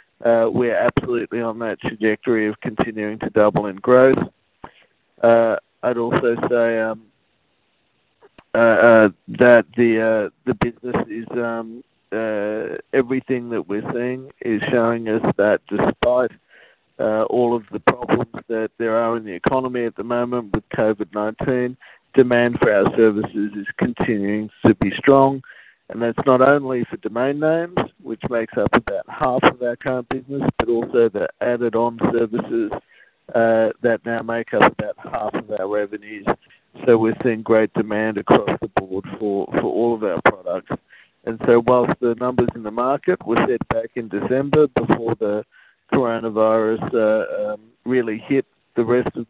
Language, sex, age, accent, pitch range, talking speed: English, male, 50-69, Australian, 110-125 Hz, 155 wpm